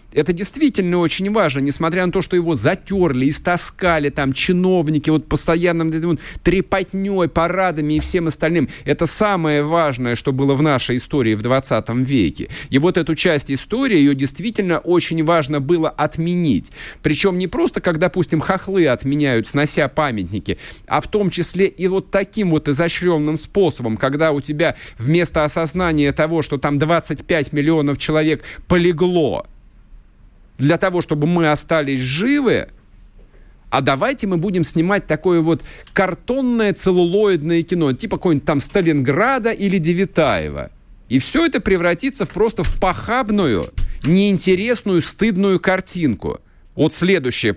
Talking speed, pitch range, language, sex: 140 wpm, 145-190 Hz, Russian, male